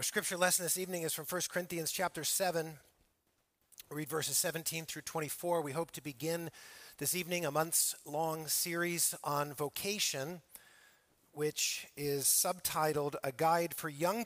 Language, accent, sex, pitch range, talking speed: English, American, male, 135-165 Hz, 150 wpm